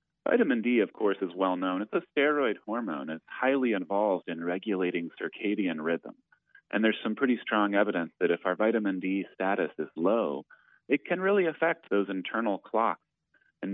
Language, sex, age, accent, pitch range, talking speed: English, male, 30-49, American, 85-120 Hz, 170 wpm